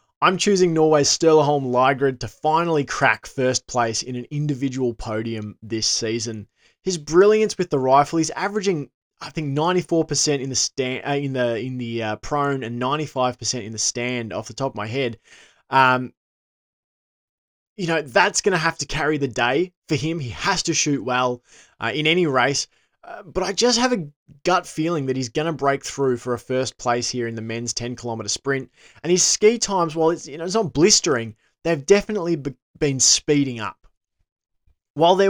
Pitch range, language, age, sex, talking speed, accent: 120-160 Hz, English, 20-39, male, 190 wpm, Australian